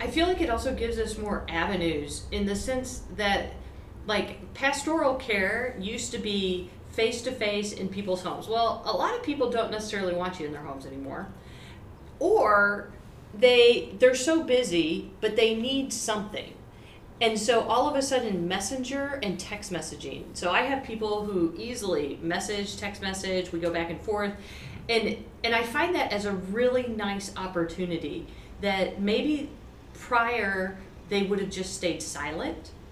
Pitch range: 175-230 Hz